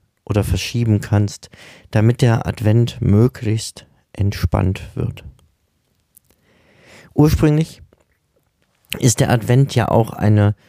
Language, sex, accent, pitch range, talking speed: German, male, German, 95-110 Hz, 90 wpm